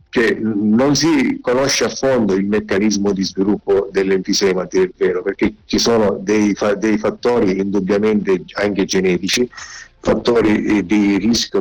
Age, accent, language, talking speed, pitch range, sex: 50-69, native, Italian, 135 wpm, 95-110 Hz, male